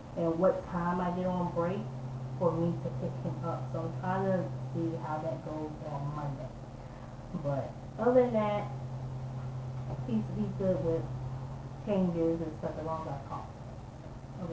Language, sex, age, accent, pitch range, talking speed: English, female, 20-39, American, 130-175 Hz, 160 wpm